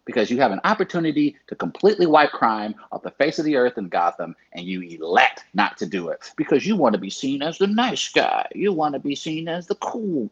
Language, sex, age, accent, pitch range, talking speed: English, male, 40-59, American, 110-180 Hz, 235 wpm